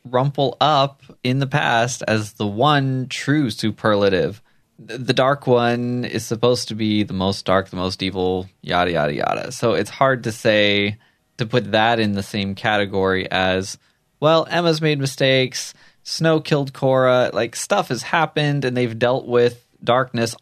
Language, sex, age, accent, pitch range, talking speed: English, male, 20-39, American, 105-130 Hz, 160 wpm